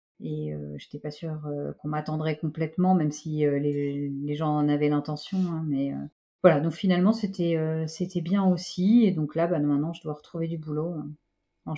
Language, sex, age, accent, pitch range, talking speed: French, female, 40-59, French, 150-175 Hz, 215 wpm